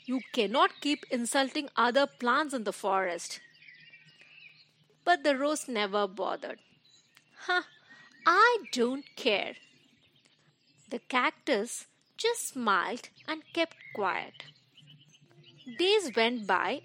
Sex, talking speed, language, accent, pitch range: female, 105 wpm, English, Indian, 200-315 Hz